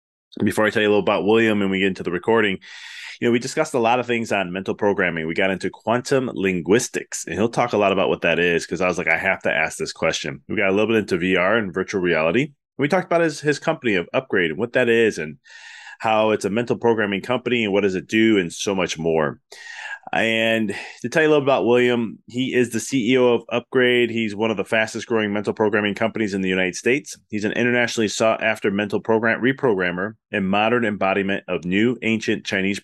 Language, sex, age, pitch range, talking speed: English, male, 20-39, 95-120 Hz, 235 wpm